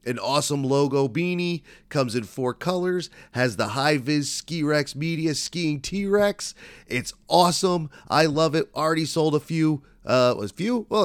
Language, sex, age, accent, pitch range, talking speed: English, male, 30-49, American, 125-170 Hz, 155 wpm